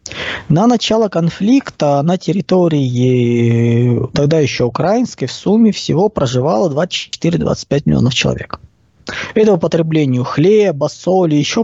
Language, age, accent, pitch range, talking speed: Russian, 20-39, native, 135-195 Hz, 105 wpm